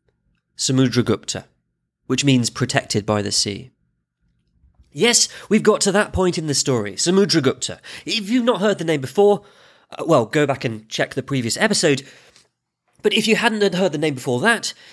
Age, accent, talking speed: 30-49, British, 165 wpm